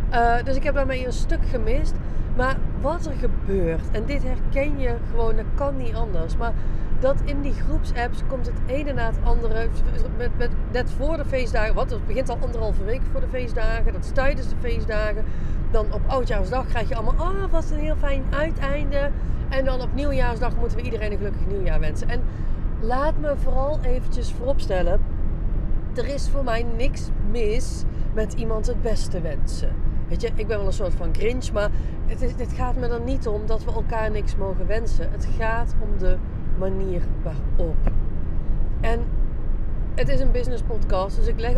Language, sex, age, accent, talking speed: Dutch, female, 30-49, Dutch, 195 wpm